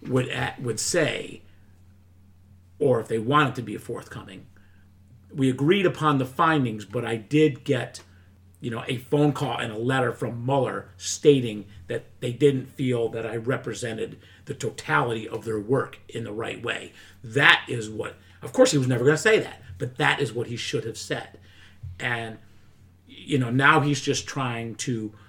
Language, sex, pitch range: English, male, 105-145 Hz